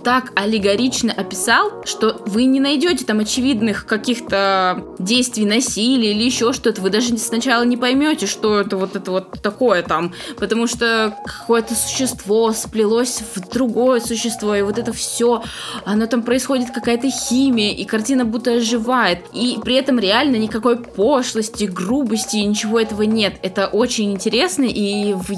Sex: female